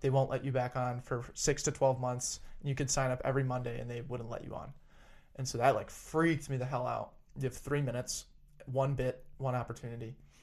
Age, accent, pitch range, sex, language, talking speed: 20-39, American, 125-140 Hz, male, English, 230 wpm